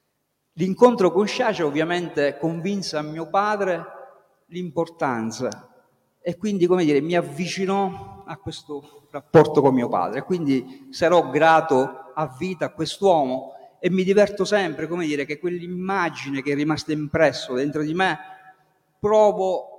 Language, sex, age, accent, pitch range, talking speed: Italian, male, 50-69, native, 140-175 Hz, 135 wpm